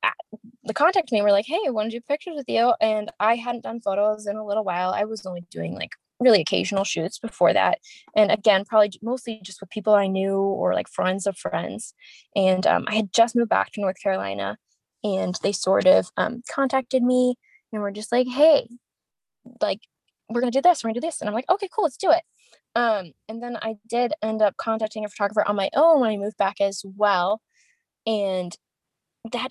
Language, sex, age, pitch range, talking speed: English, female, 10-29, 205-265 Hz, 220 wpm